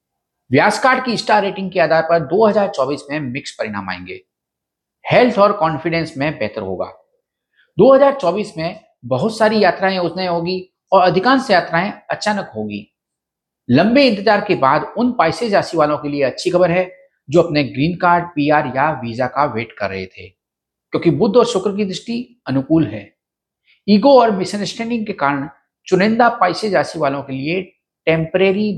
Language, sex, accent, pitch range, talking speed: Hindi, male, native, 145-215 Hz, 155 wpm